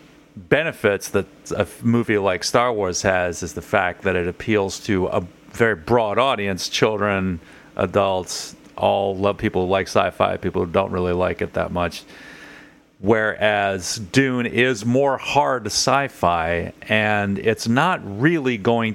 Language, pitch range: English, 95-125 Hz